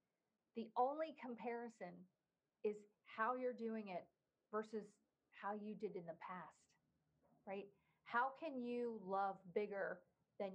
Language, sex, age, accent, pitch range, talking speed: English, female, 40-59, American, 195-235 Hz, 125 wpm